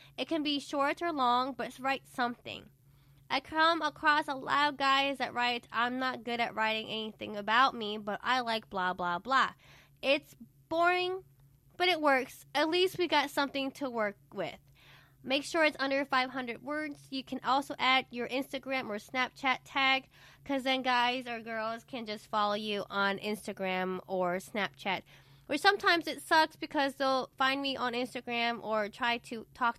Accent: American